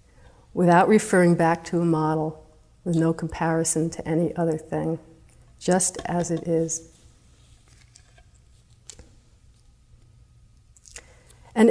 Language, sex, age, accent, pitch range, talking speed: English, female, 50-69, American, 155-180 Hz, 90 wpm